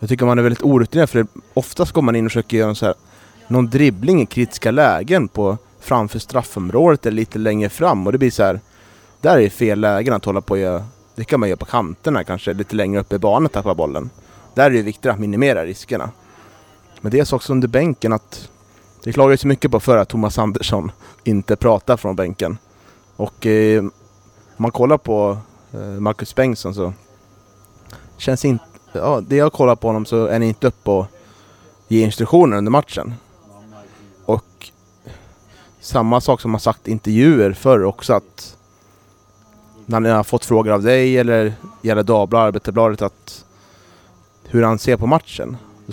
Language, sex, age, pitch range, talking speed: Swedish, male, 30-49, 105-120 Hz, 180 wpm